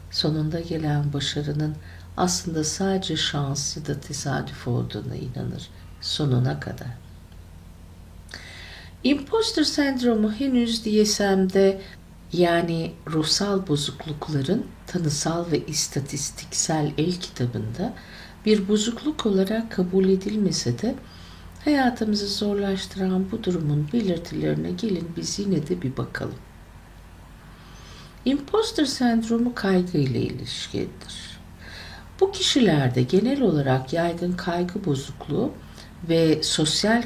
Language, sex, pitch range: Turkish, female, 125-200 Hz